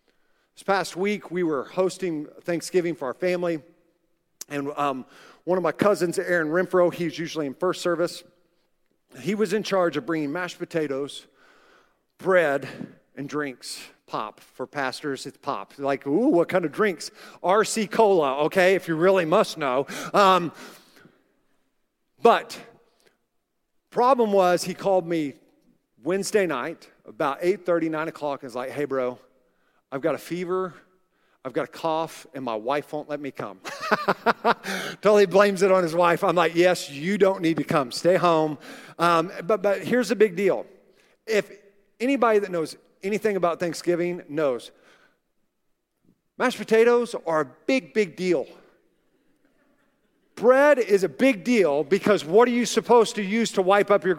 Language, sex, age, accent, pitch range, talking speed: English, male, 50-69, American, 160-210 Hz, 155 wpm